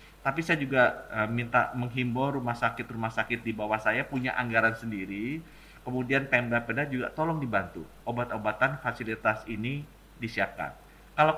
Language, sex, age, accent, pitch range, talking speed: Indonesian, male, 30-49, native, 110-140 Hz, 130 wpm